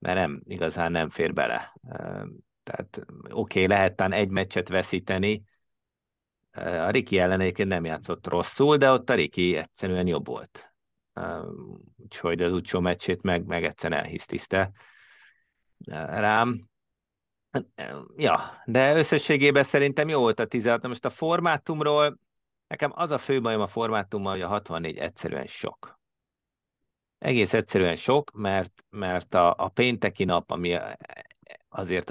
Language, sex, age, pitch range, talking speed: Hungarian, male, 50-69, 90-115 Hz, 130 wpm